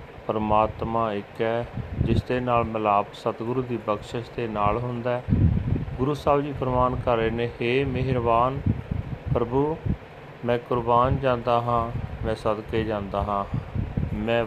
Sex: male